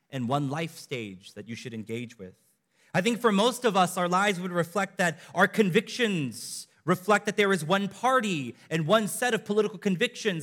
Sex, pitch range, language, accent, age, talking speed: male, 160-230 Hz, English, American, 30-49, 195 wpm